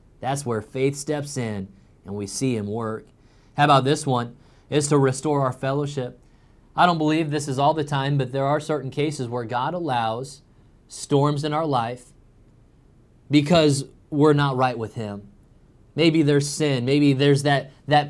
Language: English